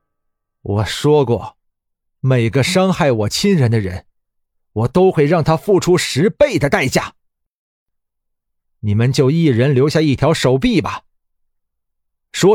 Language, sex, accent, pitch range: Chinese, male, native, 100-150 Hz